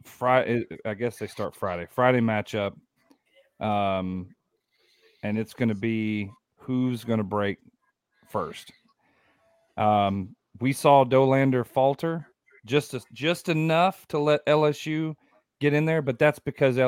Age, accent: 40-59, American